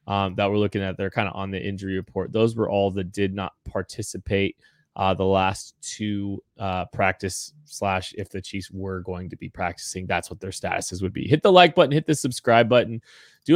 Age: 20-39